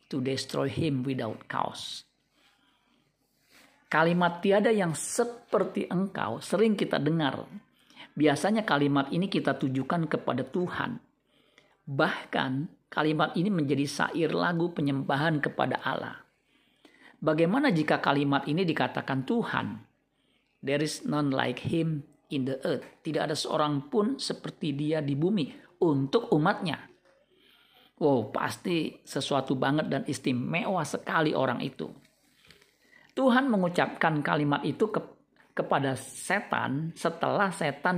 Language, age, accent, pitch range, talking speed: Indonesian, 50-69, native, 140-190 Hz, 110 wpm